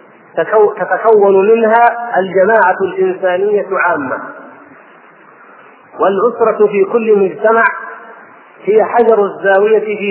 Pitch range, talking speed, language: 190-225 Hz, 75 wpm, Arabic